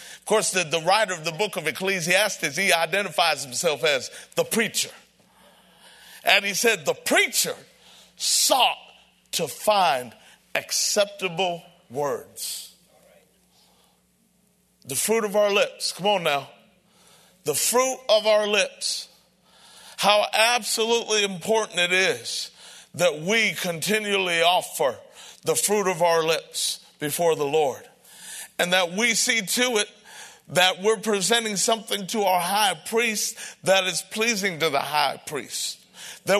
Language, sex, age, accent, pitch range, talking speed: English, male, 50-69, American, 180-220 Hz, 130 wpm